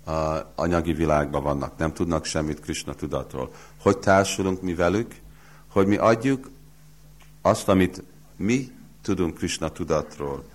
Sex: male